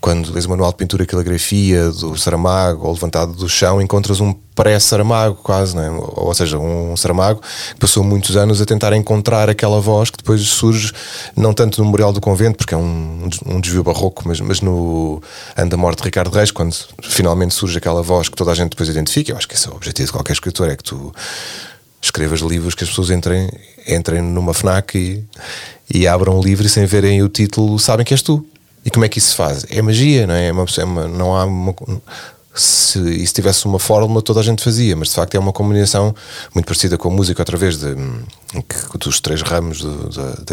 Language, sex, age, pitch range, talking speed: Portuguese, male, 20-39, 85-105 Hz, 225 wpm